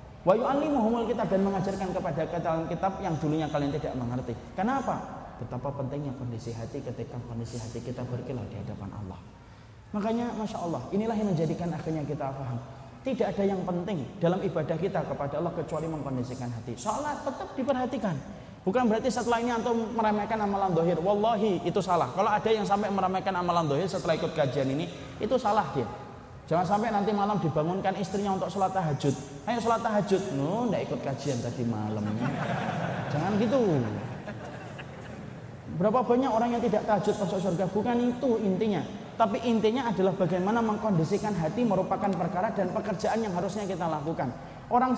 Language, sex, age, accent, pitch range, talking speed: Indonesian, male, 20-39, native, 140-210 Hz, 155 wpm